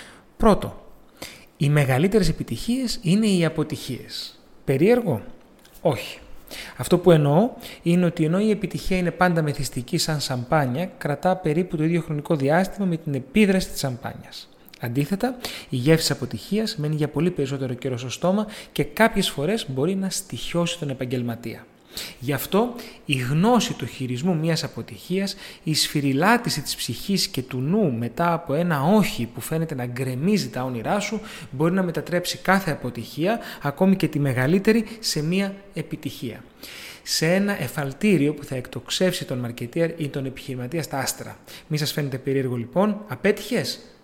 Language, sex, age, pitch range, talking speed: Greek, male, 30-49, 135-195 Hz, 150 wpm